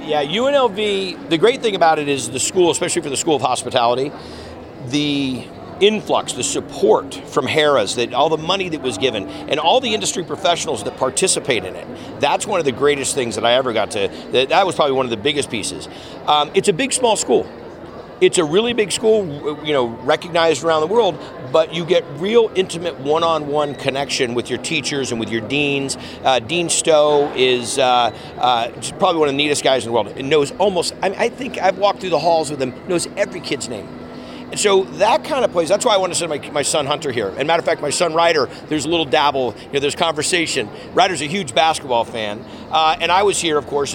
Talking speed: 225 wpm